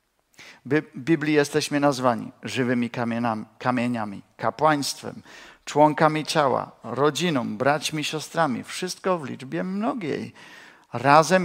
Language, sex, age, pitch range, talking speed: Czech, male, 50-69, 120-155 Hz, 90 wpm